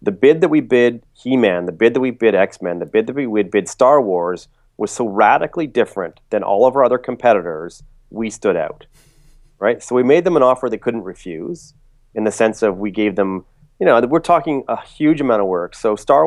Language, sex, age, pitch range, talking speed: English, male, 30-49, 105-135 Hz, 220 wpm